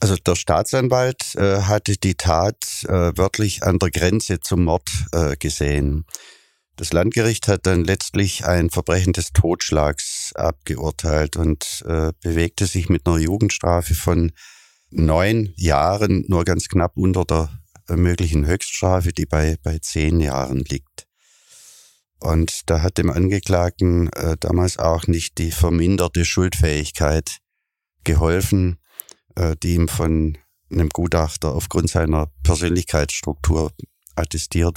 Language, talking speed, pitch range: German, 125 wpm, 80-100 Hz